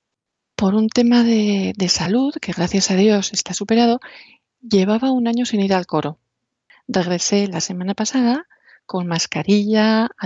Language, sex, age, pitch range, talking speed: Spanish, female, 40-59, 195-245 Hz, 150 wpm